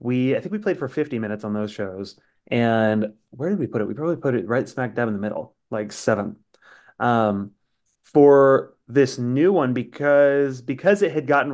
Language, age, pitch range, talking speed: English, 30-49, 110-140 Hz, 205 wpm